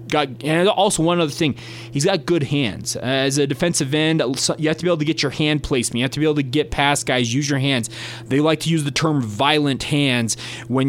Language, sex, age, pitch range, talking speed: English, male, 20-39, 125-155 Hz, 250 wpm